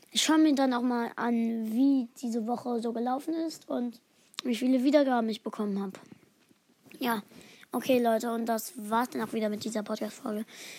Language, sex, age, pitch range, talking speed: German, female, 20-39, 220-265 Hz, 180 wpm